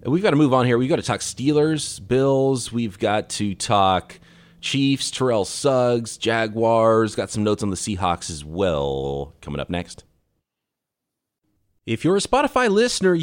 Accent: American